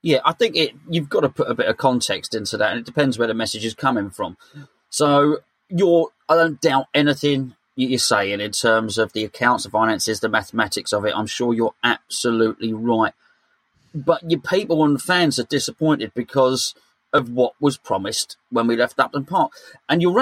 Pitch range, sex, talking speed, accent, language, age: 120-155 Hz, male, 195 wpm, British, English, 30-49